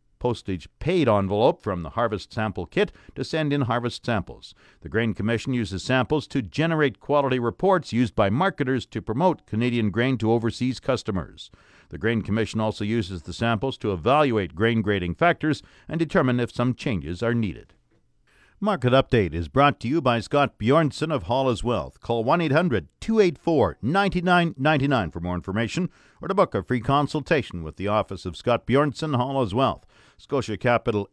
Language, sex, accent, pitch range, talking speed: English, male, American, 110-145 Hz, 160 wpm